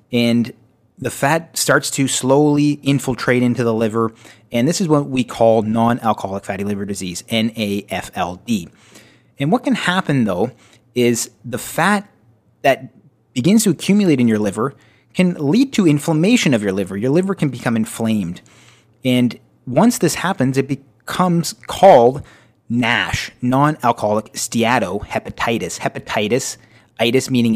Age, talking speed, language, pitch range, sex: 30-49, 130 wpm, English, 110-145 Hz, male